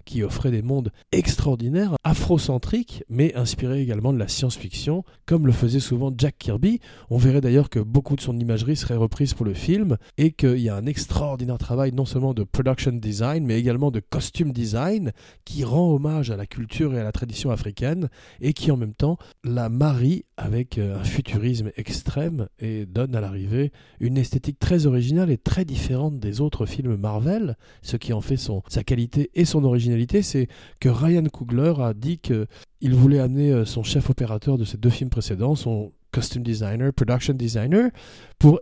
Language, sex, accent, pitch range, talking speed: French, male, French, 115-150 Hz, 185 wpm